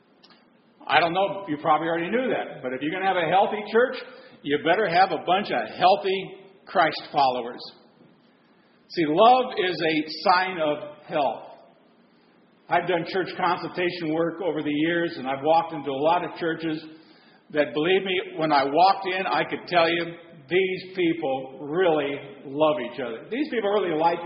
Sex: male